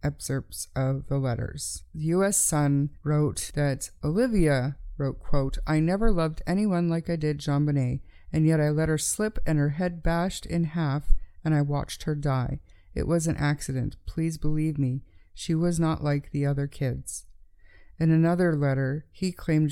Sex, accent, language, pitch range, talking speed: female, American, English, 140-165 Hz, 175 wpm